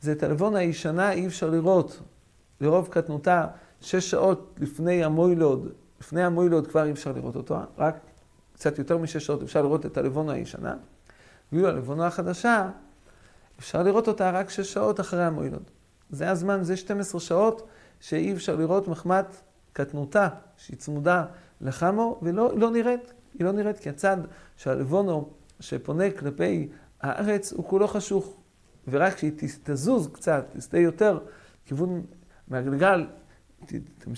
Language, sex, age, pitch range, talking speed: English, male, 40-59, 150-195 Hz, 120 wpm